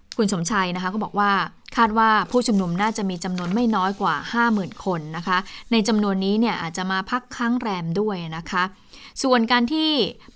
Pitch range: 190-235 Hz